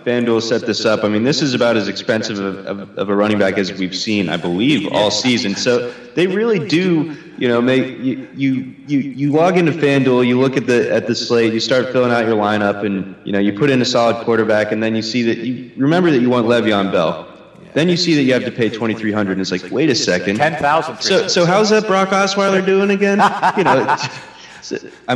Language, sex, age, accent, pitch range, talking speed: English, male, 30-49, American, 100-125 Hz, 245 wpm